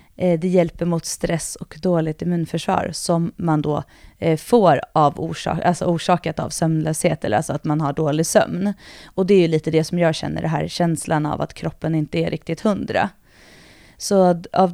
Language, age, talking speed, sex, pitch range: Swedish, 30-49, 185 wpm, female, 160-180 Hz